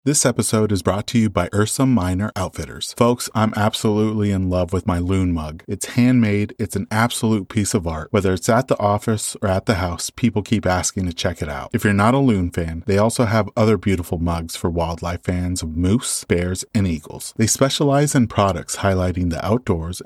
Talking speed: 210 wpm